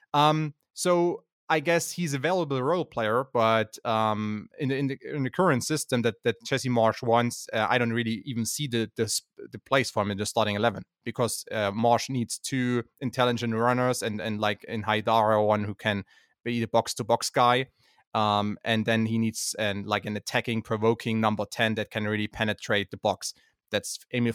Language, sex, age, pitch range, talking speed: English, male, 30-49, 110-125 Hz, 200 wpm